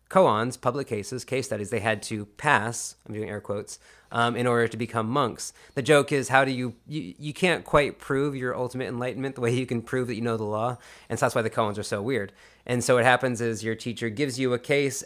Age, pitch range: 30-49, 110-130 Hz